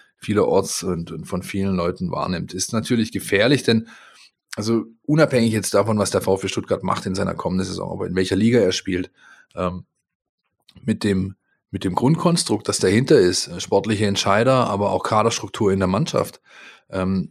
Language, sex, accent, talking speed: German, male, German, 165 wpm